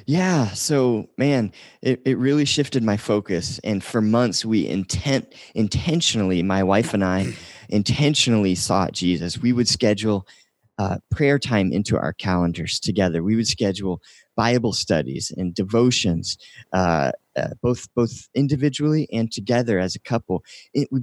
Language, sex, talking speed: English, male, 145 wpm